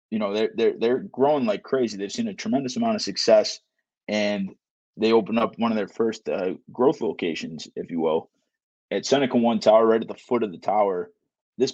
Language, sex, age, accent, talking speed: English, male, 20-39, American, 210 wpm